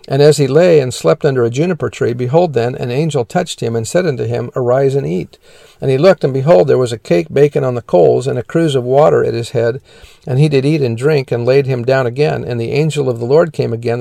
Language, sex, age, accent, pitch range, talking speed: English, male, 50-69, American, 120-150 Hz, 270 wpm